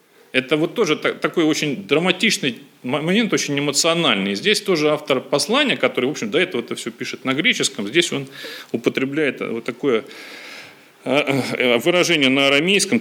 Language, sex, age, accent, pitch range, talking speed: Russian, male, 40-59, native, 135-200 Hz, 145 wpm